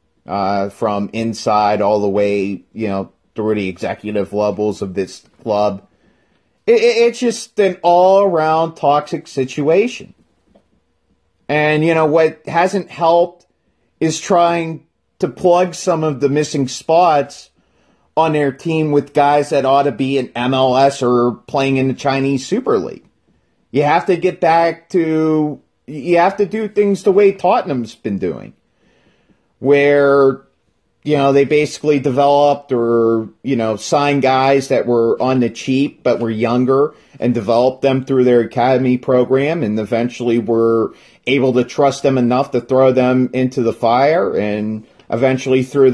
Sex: male